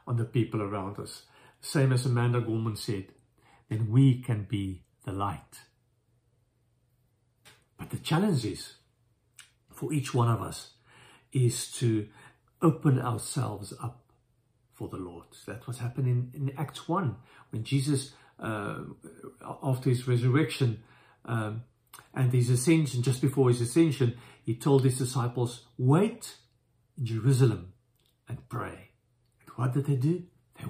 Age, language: 50-69, English